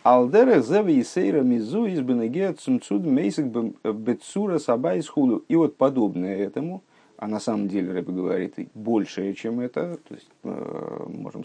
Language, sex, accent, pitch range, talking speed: Russian, male, native, 105-160 Hz, 85 wpm